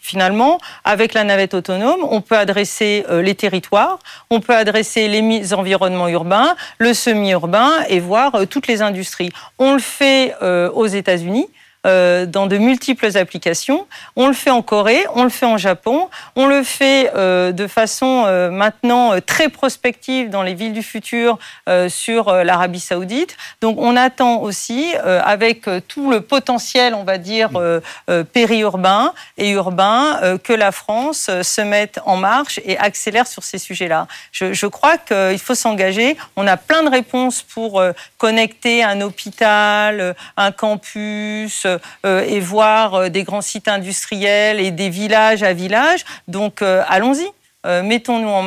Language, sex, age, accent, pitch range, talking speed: French, female, 40-59, French, 190-240 Hz, 145 wpm